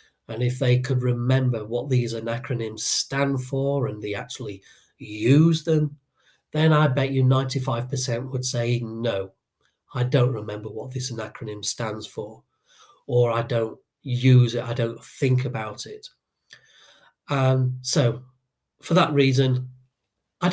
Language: English